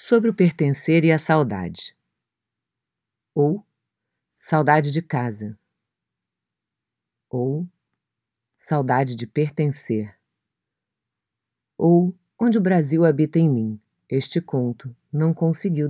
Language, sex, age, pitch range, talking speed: Portuguese, female, 40-59, 120-170 Hz, 95 wpm